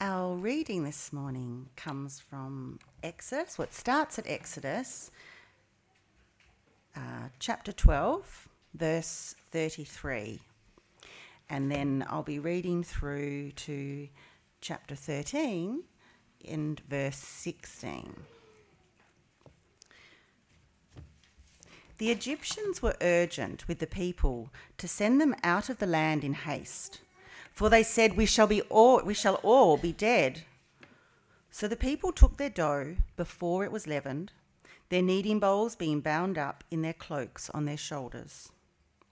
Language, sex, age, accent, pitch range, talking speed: English, female, 40-59, Australian, 145-210 Hz, 125 wpm